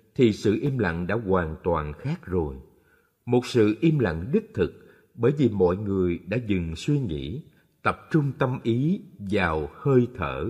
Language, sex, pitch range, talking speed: Vietnamese, male, 90-155 Hz, 170 wpm